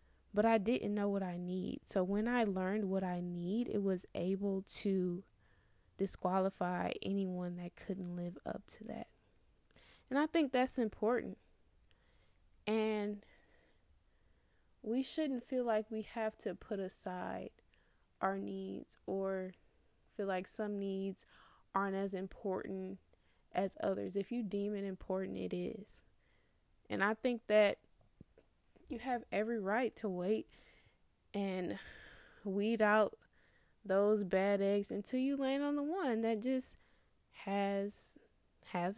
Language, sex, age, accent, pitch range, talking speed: English, female, 10-29, American, 185-220 Hz, 130 wpm